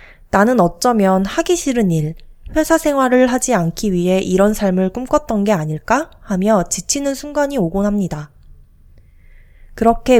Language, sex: Korean, female